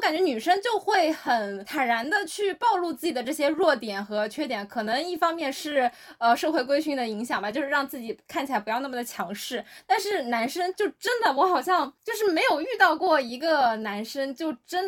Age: 10-29